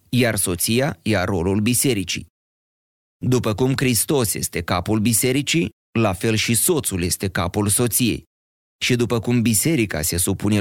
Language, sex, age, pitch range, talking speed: Romanian, male, 30-49, 105-135 Hz, 135 wpm